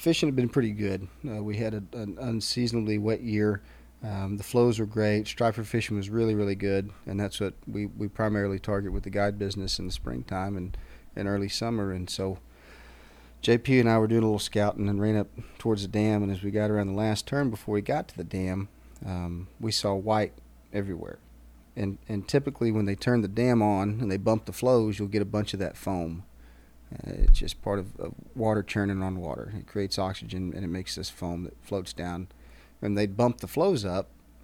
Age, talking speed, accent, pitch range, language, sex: 40-59, 220 wpm, American, 90-110 Hz, English, male